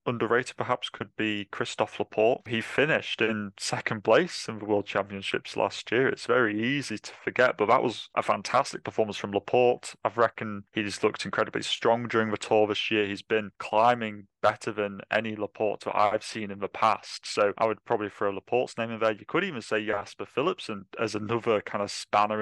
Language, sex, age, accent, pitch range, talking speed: English, male, 20-39, British, 105-115 Hz, 200 wpm